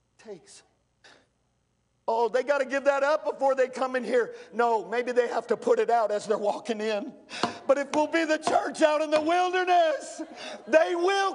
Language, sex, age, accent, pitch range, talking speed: English, male, 50-69, American, 210-275 Hz, 190 wpm